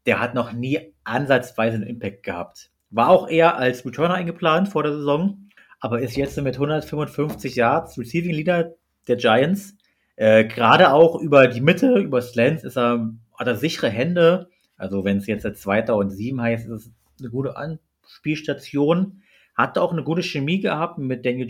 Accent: German